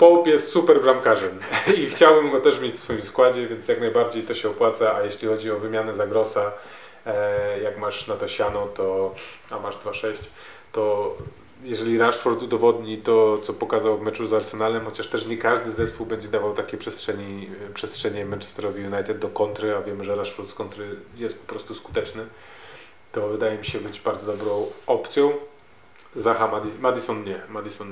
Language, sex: Polish, male